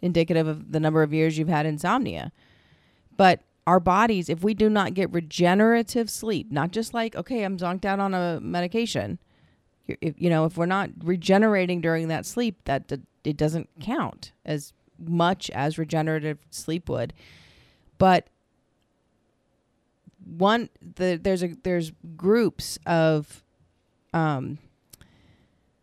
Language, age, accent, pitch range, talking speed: English, 30-49, American, 155-200 Hz, 135 wpm